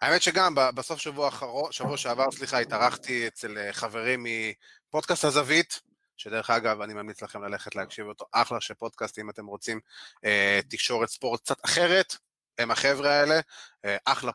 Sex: male